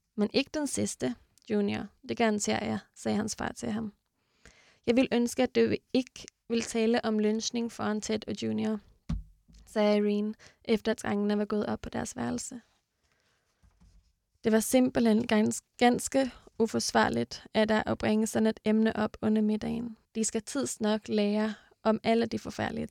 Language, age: Danish, 20-39